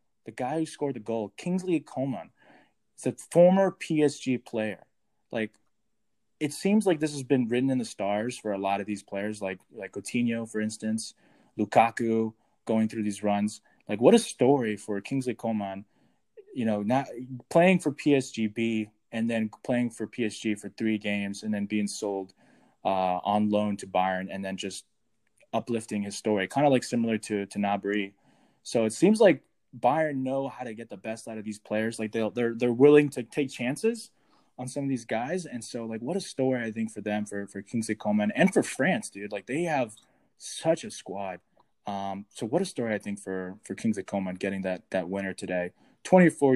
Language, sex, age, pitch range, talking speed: English, male, 20-39, 105-130 Hz, 195 wpm